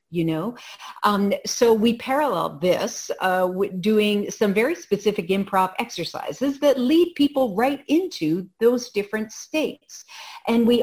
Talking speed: 135 wpm